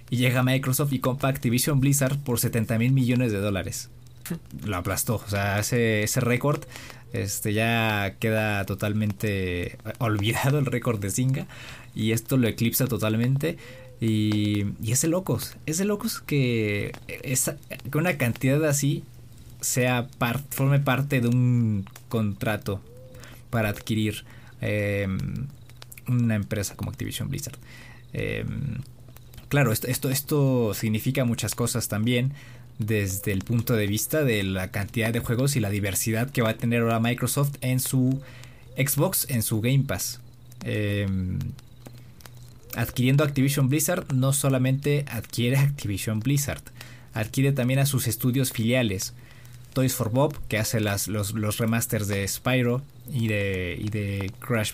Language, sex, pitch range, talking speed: Spanish, male, 110-130 Hz, 140 wpm